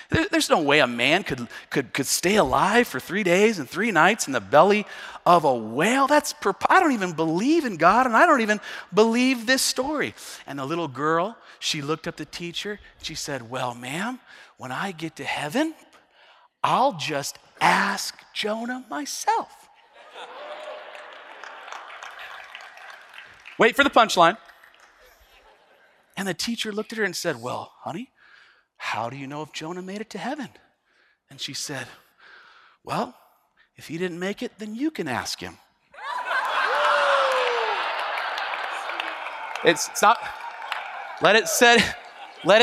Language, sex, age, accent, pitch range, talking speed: English, male, 40-59, American, 170-265 Hz, 140 wpm